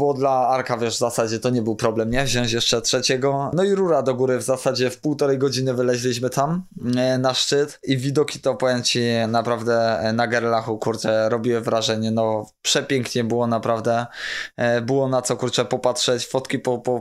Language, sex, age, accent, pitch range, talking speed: Polish, male, 20-39, native, 115-135 Hz, 185 wpm